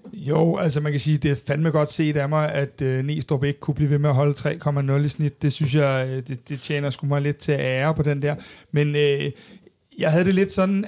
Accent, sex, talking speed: native, male, 255 wpm